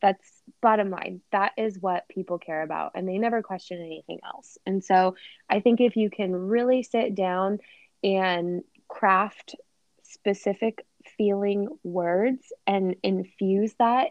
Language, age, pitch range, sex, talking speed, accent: English, 20-39, 180-205 Hz, female, 140 wpm, American